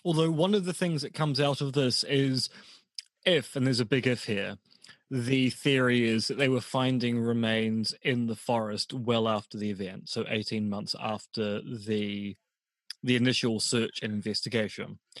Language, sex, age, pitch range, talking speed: English, male, 20-39, 110-135 Hz, 170 wpm